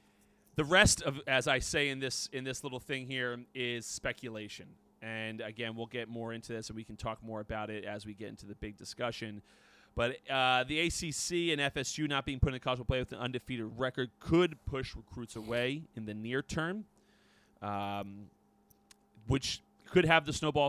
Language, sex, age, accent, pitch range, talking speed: English, male, 30-49, American, 110-135 Hz, 195 wpm